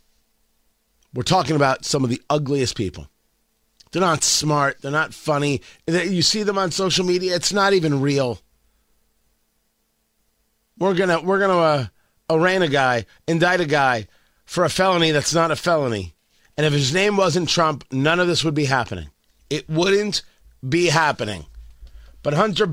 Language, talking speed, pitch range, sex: English, 160 wpm, 115-180 Hz, male